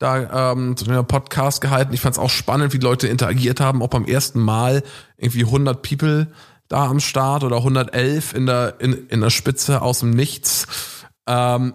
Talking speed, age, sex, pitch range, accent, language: 195 wpm, 20-39, male, 120-140 Hz, German, German